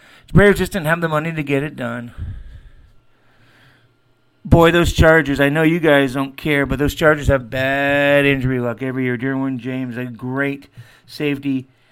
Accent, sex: American, male